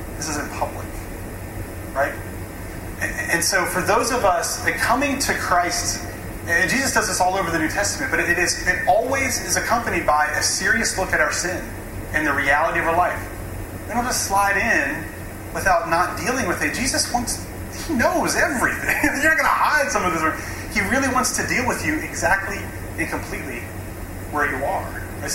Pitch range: 95-145 Hz